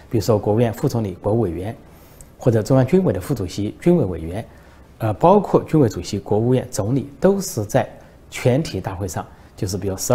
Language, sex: Chinese, male